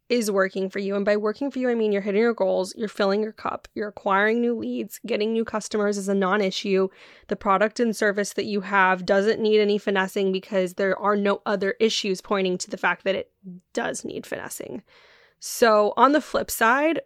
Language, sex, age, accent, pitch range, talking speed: English, female, 10-29, American, 195-230 Hz, 210 wpm